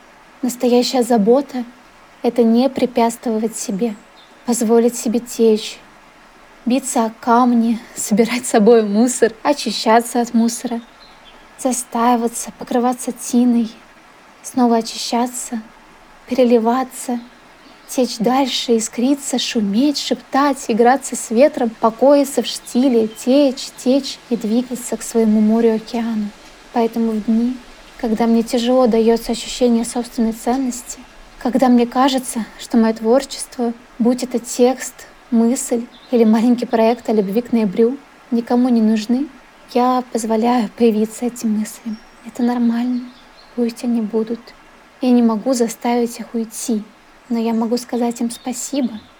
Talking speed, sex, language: 115 wpm, female, Russian